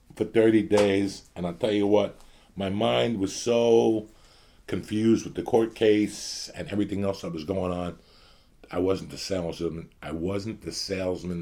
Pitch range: 80-100 Hz